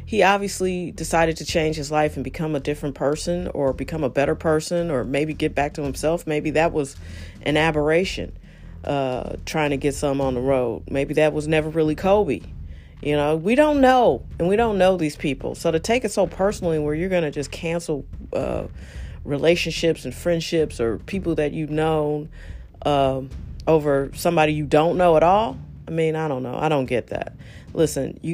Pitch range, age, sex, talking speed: 135-165 Hz, 40-59, female, 195 wpm